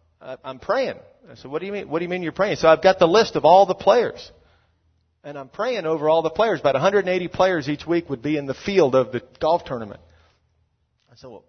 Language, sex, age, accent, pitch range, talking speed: English, male, 40-59, American, 130-180 Hz, 245 wpm